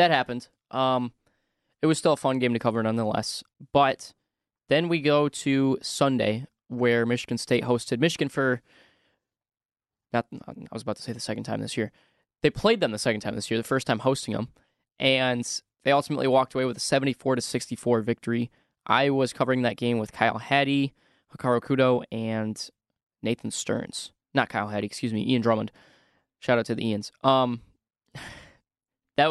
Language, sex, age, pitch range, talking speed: English, male, 10-29, 115-135 Hz, 170 wpm